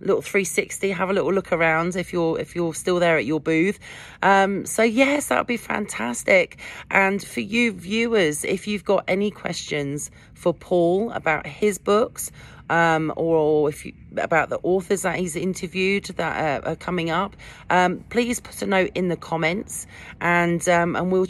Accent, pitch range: British, 160-200 Hz